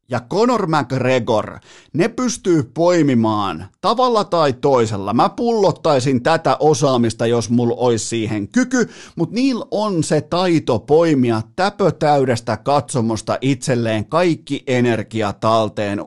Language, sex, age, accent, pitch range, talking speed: Finnish, male, 50-69, native, 120-165 Hz, 110 wpm